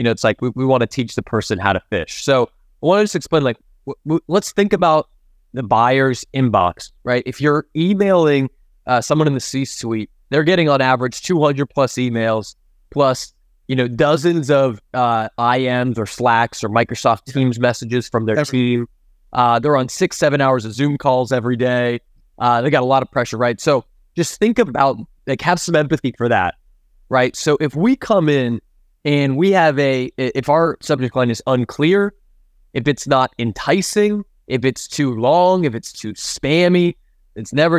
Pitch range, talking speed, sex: 120-150 Hz, 190 wpm, male